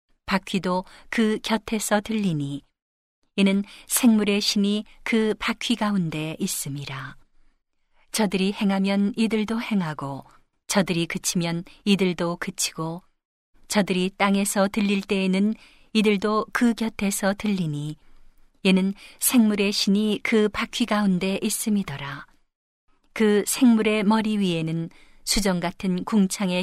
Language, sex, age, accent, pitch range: Korean, female, 40-59, native, 180-215 Hz